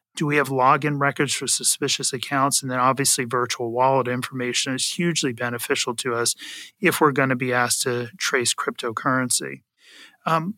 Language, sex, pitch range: English, male, 125-150 Hz